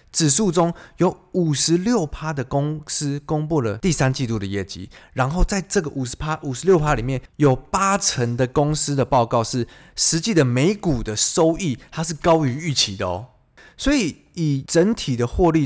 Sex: male